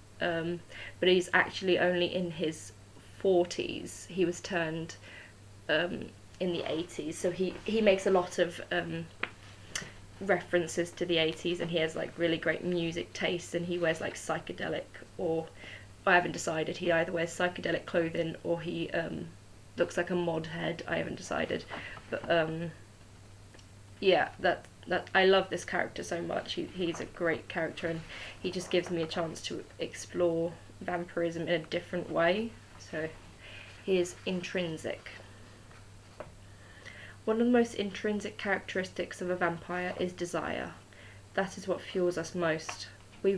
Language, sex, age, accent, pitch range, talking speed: English, female, 20-39, British, 110-180 Hz, 155 wpm